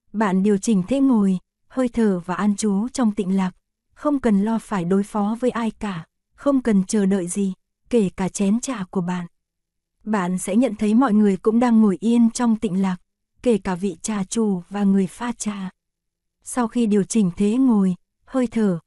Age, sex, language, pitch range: 20-39, female, Korean, 195-230 Hz